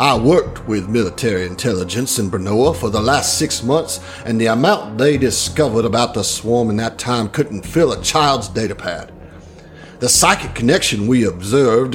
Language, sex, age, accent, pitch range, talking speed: English, male, 50-69, American, 95-130 Hz, 165 wpm